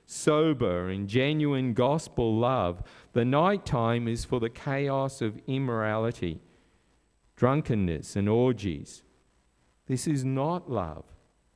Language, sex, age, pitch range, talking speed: English, male, 50-69, 100-150 Hz, 105 wpm